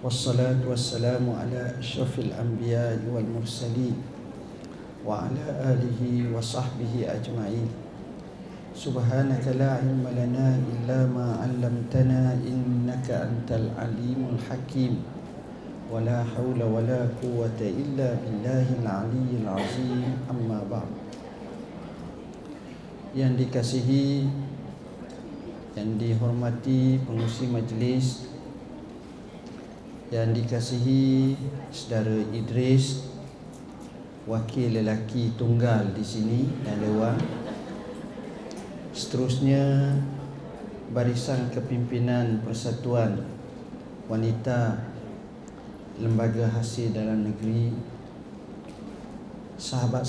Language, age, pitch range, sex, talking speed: Malay, 50-69, 115-125 Hz, male, 70 wpm